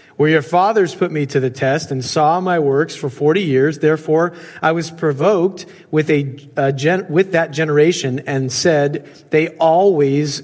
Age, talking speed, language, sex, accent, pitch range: 40-59, 155 wpm, English, male, American, 145-185 Hz